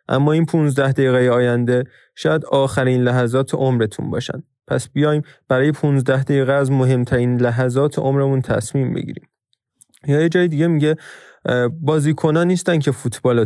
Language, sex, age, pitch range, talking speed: Persian, male, 20-39, 125-155 Hz, 135 wpm